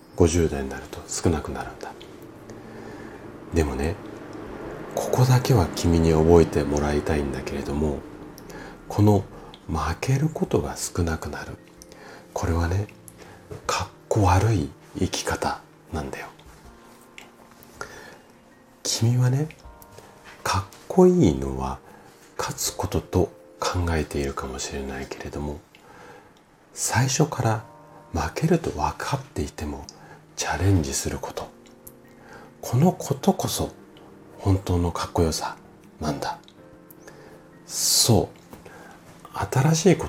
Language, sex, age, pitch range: Japanese, male, 40-59, 75-115 Hz